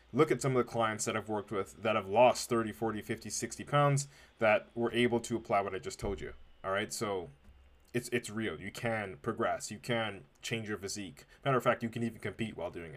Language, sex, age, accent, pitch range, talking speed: English, male, 20-39, American, 105-135 Hz, 235 wpm